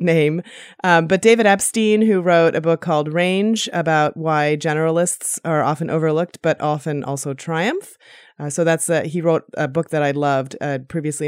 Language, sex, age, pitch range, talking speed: English, female, 30-49, 150-175 Hz, 180 wpm